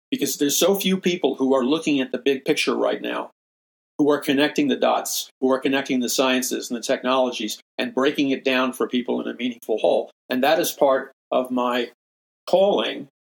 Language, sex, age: English, male, 50-69